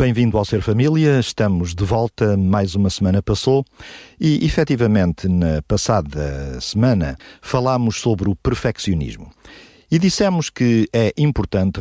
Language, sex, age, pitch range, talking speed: Portuguese, male, 50-69, 90-115 Hz, 125 wpm